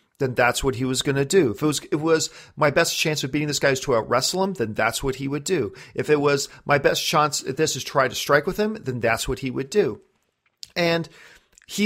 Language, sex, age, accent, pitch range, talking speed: English, male, 40-59, American, 130-175 Hz, 270 wpm